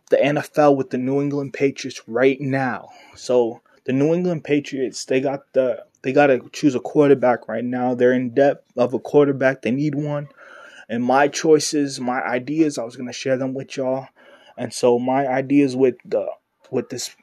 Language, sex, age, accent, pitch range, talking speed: English, male, 20-39, American, 135-155 Hz, 185 wpm